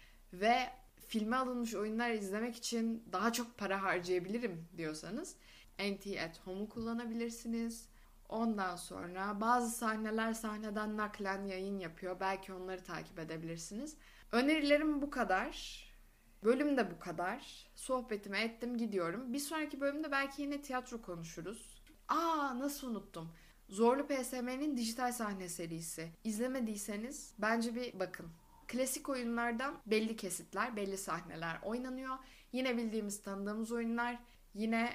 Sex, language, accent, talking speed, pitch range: female, Turkish, native, 115 wpm, 185-245 Hz